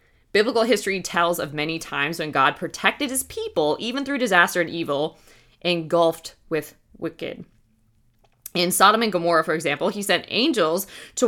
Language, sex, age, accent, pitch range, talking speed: English, female, 20-39, American, 150-200 Hz, 155 wpm